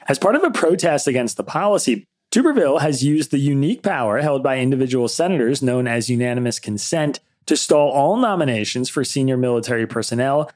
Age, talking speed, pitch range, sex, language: 30-49, 170 wpm, 125-155 Hz, male, English